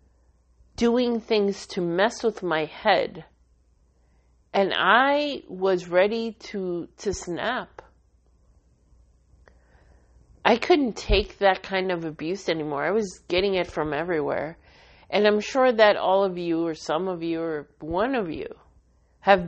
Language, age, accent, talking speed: English, 40-59, American, 135 wpm